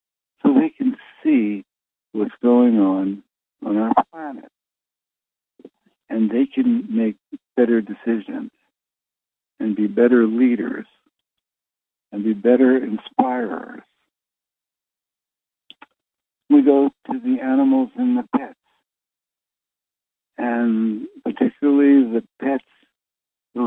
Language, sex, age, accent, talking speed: English, male, 60-79, American, 95 wpm